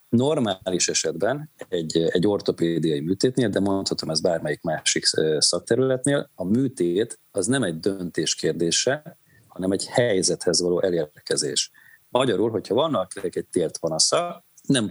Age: 40-59